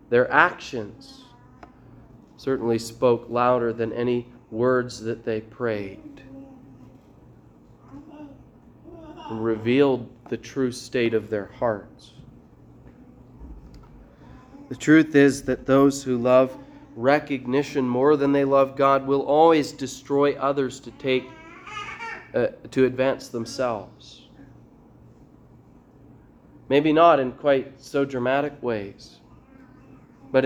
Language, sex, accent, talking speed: English, male, American, 100 wpm